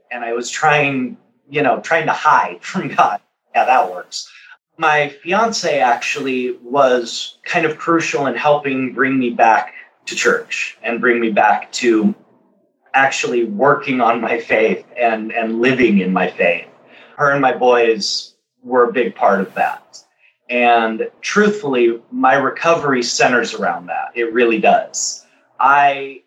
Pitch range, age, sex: 125-175 Hz, 30-49, male